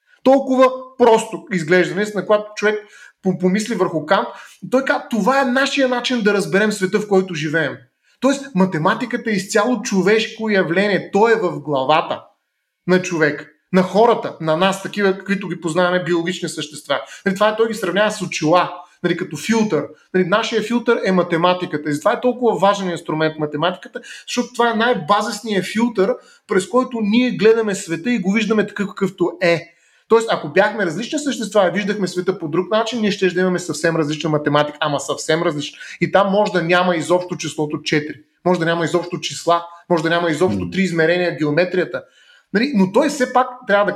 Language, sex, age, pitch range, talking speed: Bulgarian, male, 30-49, 165-210 Hz, 170 wpm